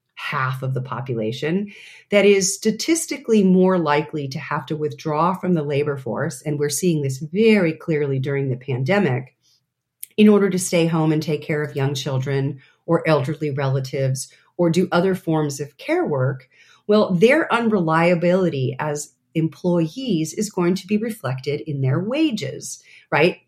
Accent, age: American, 40-59